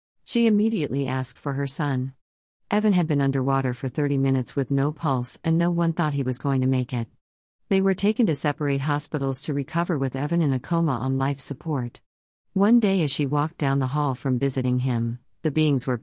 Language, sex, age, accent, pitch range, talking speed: English, female, 50-69, American, 130-160 Hz, 210 wpm